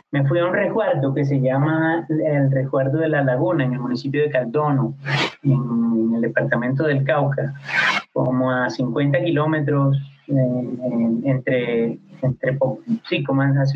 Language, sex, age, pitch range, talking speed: Spanish, male, 30-49, 135-175 Hz, 125 wpm